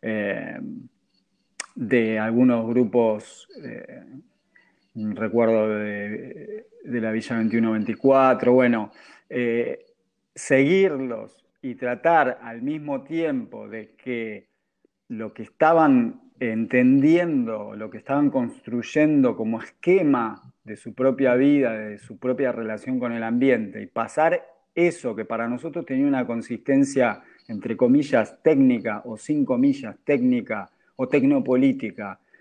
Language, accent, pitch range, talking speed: Spanish, Argentinian, 110-150 Hz, 110 wpm